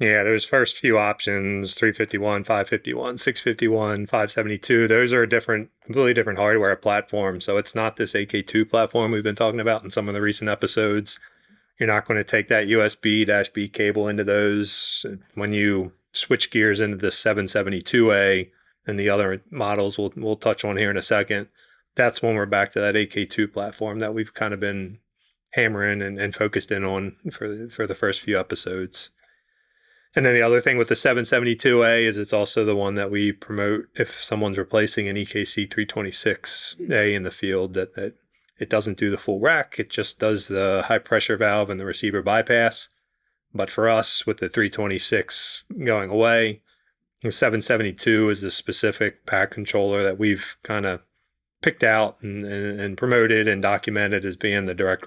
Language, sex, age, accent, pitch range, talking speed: English, male, 30-49, American, 100-110 Hz, 195 wpm